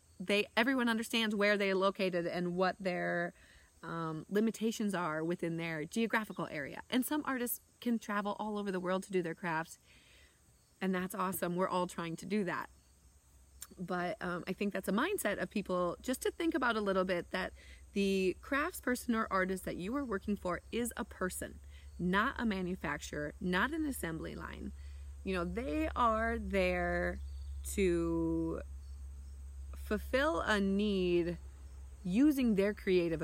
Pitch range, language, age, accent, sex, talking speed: 160-220 Hz, English, 30-49, American, female, 155 wpm